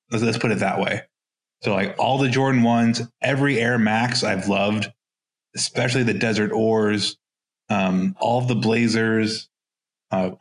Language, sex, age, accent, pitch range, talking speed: English, male, 20-39, American, 105-125 Hz, 140 wpm